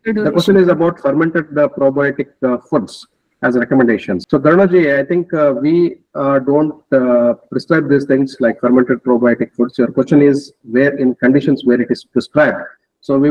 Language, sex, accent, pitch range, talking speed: English, male, Indian, 130-155 Hz, 175 wpm